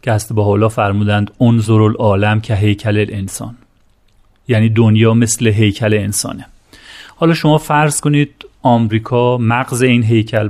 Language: Persian